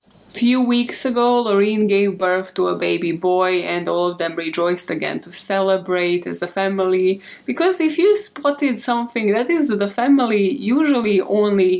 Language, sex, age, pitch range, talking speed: English, female, 20-39, 180-205 Hz, 165 wpm